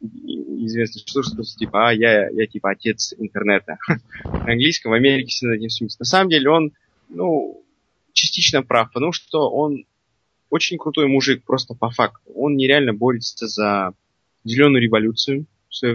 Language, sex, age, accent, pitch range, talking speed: Russian, male, 20-39, native, 110-135 Hz, 145 wpm